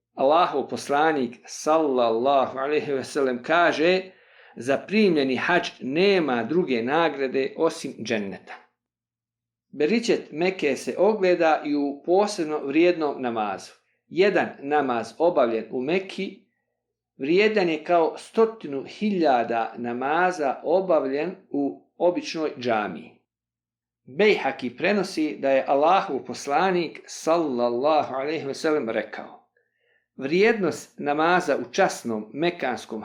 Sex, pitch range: male, 125-190 Hz